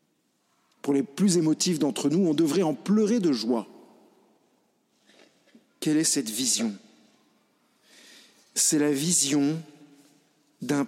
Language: French